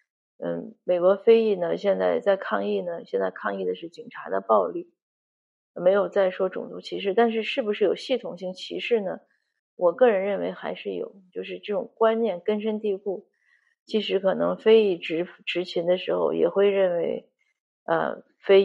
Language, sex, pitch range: Chinese, female, 175-220 Hz